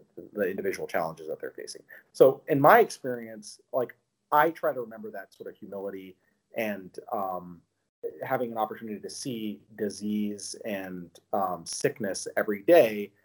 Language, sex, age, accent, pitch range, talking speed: English, male, 30-49, American, 100-160 Hz, 145 wpm